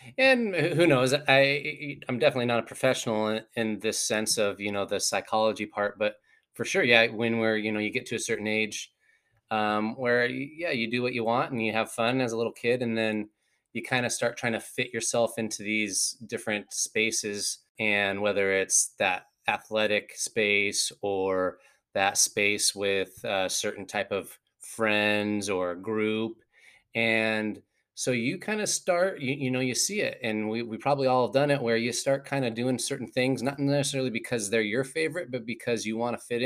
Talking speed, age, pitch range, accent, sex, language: 200 wpm, 20-39, 105-130 Hz, American, male, English